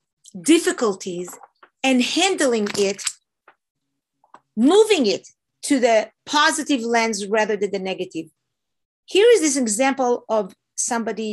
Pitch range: 205-280 Hz